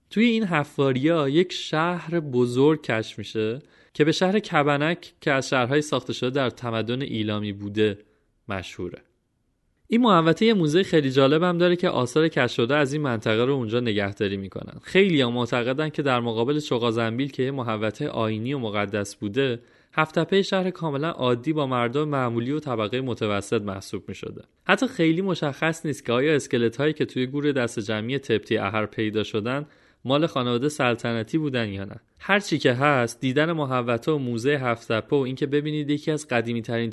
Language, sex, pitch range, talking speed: Persian, male, 115-155 Hz, 160 wpm